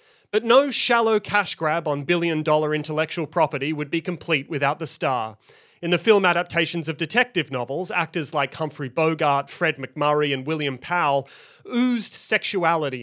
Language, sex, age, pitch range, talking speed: English, male, 30-49, 140-185 Hz, 145 wpm